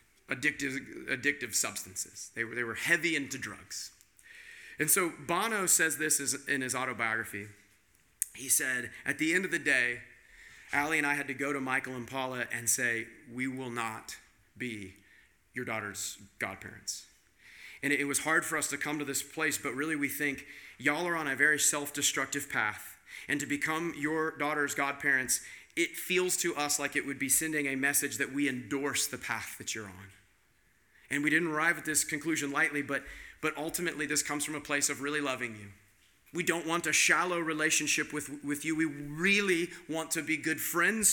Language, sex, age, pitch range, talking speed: English, male, 30-49, 130-160 Hz, 185 wpm